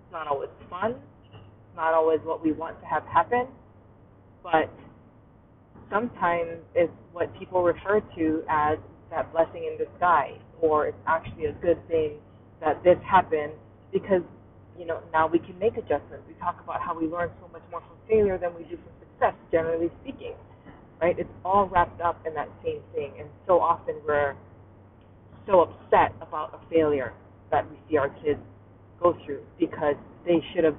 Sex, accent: female, American